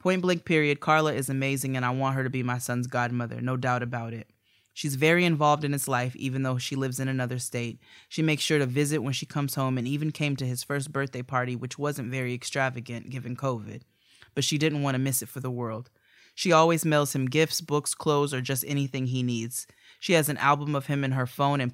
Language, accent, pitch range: English, American, 125-145 Hz